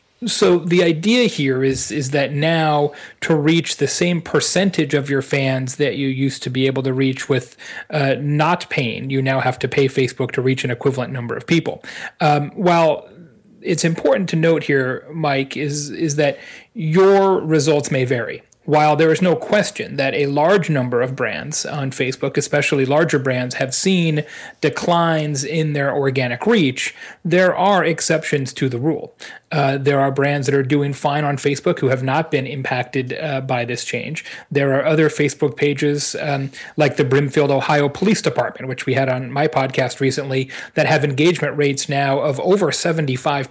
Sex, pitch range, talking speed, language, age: male, 135-165 Hz, 180 wpm, English, 30-49